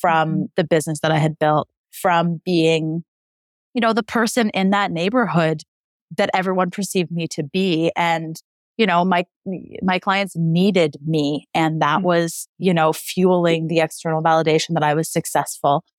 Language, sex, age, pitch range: English, female, 30-49, 155-175 Hz